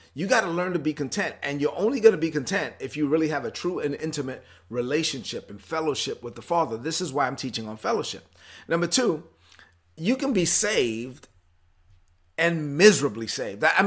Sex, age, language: male, 30-49, English